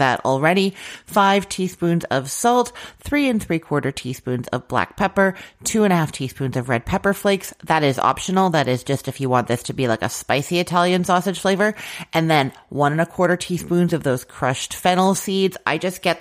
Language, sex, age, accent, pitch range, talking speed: English, female, 30-49, American, 130-175 Hz, 205 wpm